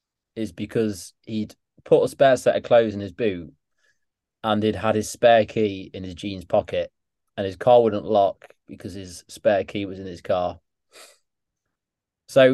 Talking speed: 170 wpm